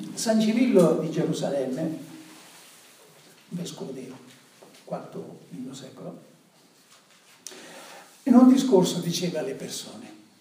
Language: Italian